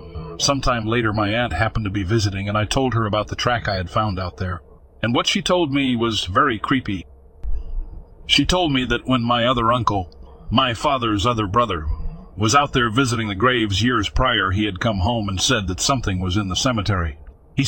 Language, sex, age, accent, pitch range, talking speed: English, male, 50-69, American, 95-130 Hz, 205 wpm